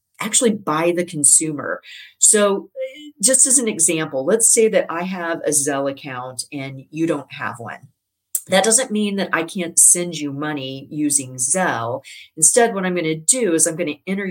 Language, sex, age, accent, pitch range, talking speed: English, female, 50-69, American, 145-185 Hz, 175 wpm